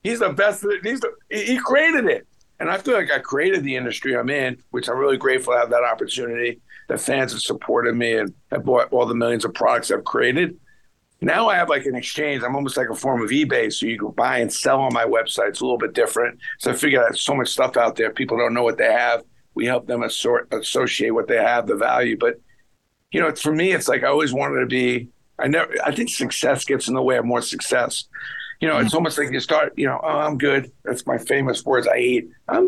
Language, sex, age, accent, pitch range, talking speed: English, male, 50-69, American, 120-205 Hz, 250 wpm